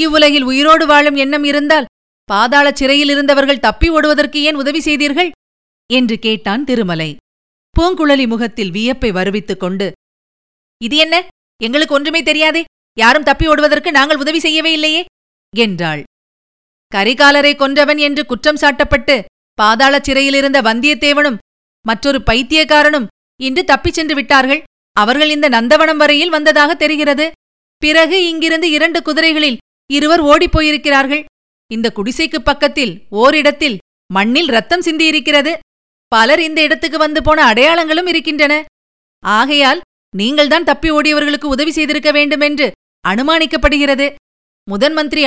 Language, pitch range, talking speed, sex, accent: Tamil, 265-310 Hz, 115 wpm, female, native